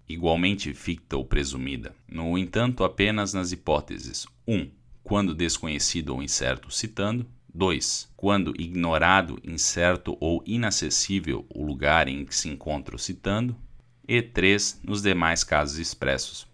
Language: Portuguese